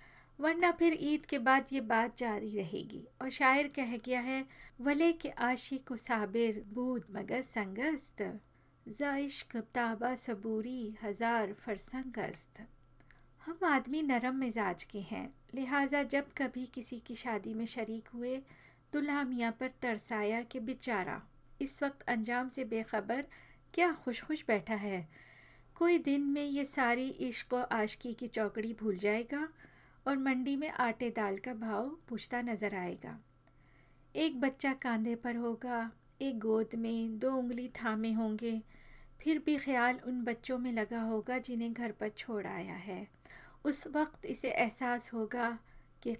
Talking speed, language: 145 wpm, Hindi